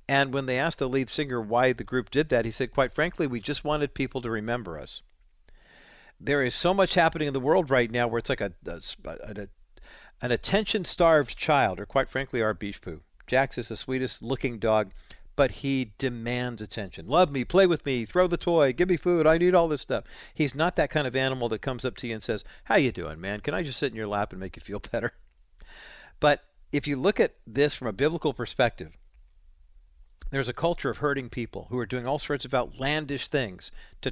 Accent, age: American, 50-69